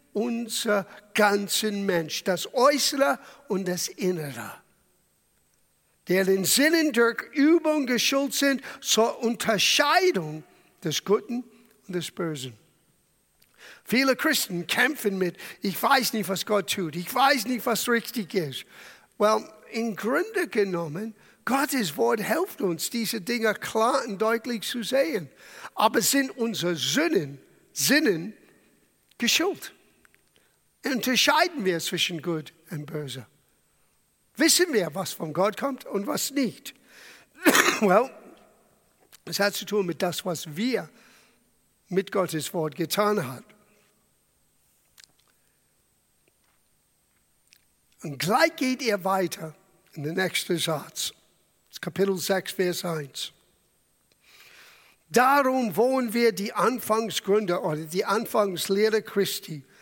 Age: 60-79